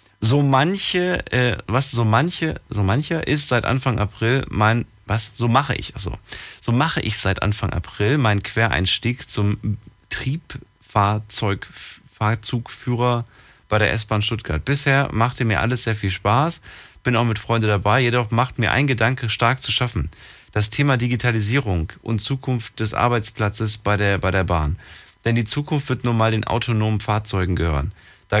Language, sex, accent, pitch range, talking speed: German, male, German, 100-125 Hz, 160 wpm